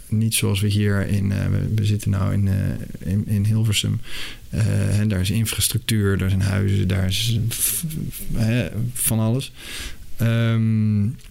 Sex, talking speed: male, 165 wpm